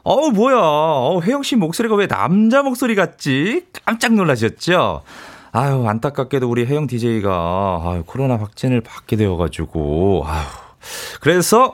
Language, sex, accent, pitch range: Korean, male, native, 100-165 Hz